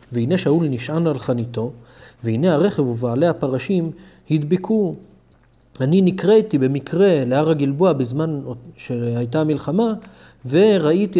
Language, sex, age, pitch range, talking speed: Hebrew, male, 30-49, 125-155 Hz, 100 wpm